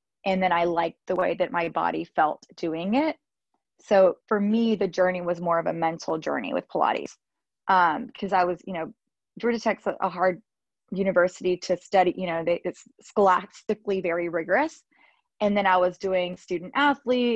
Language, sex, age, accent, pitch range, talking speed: English, female, 20-39, American, 175-205 Hz, 175 wpm